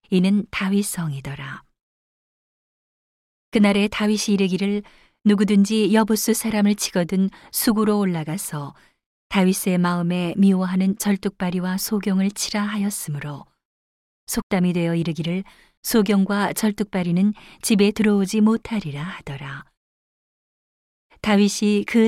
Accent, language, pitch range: native, Korean, 175-205 Hz